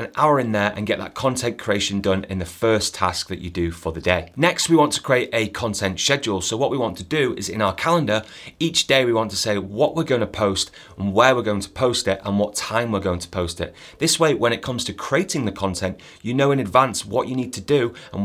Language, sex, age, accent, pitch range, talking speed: English, male, 30-49, British, 95-135 Hz, 275 wpm